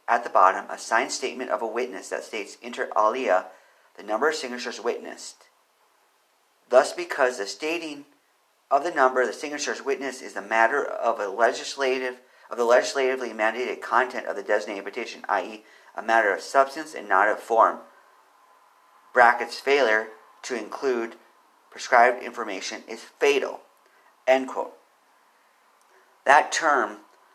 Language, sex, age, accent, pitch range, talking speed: English, male, 40-59, American, 115-145 Hz, 145 wpm